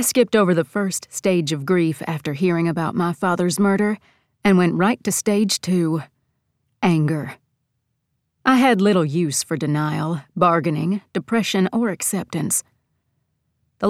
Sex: female